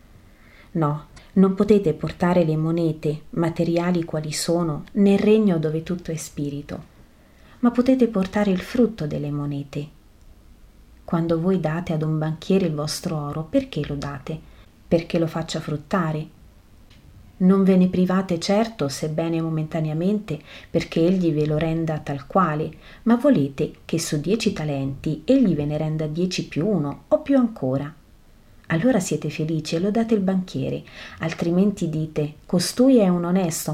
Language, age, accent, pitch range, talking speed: Italian, 30-49, native, 150-190 Hz, 145 wpm